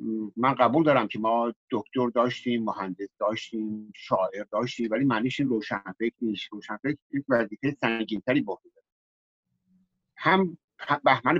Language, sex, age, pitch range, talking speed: Persian, male, 50-69, 120-150 Hz, 105 wpm